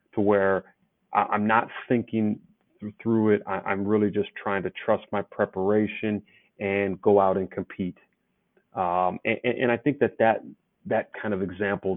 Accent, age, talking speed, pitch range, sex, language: American, 30-49, 155 wpm, 100-110 Hz, male, English